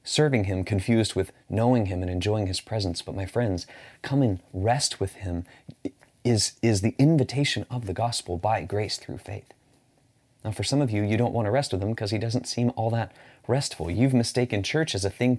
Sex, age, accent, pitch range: male, 30-49, American, 105-145 Hz